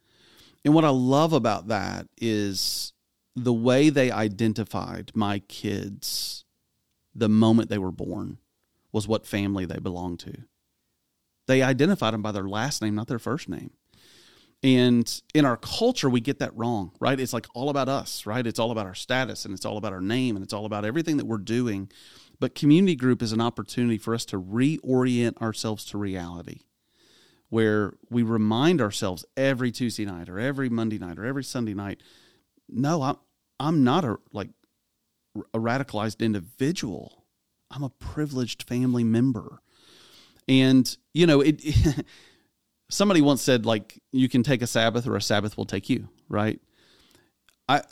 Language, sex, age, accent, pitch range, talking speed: English, male, 30-49, American, 105-135 Hz, 165 wpm